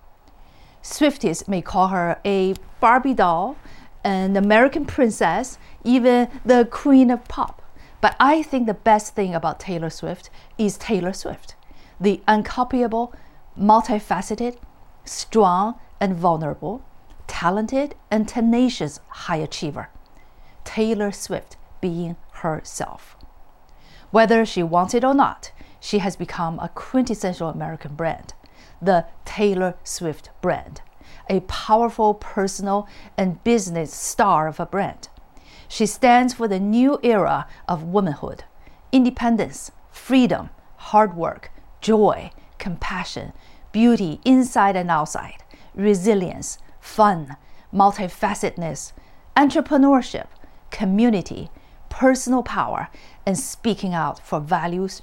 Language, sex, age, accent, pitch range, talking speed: English, female, 40-59, Chinese, 180-235 Hz, 105 wpm